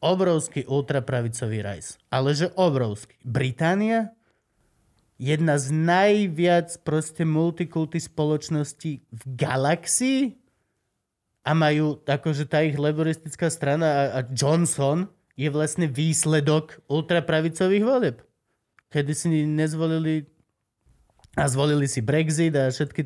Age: 30-49